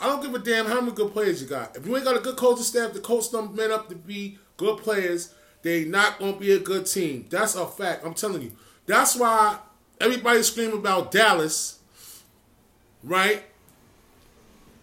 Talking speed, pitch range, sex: 200 wpm, 200-270 Hz, male